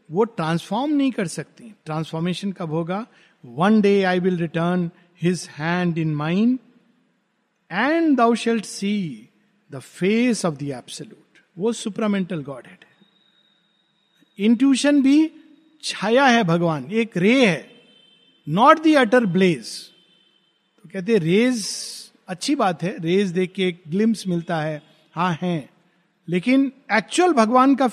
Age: 50-69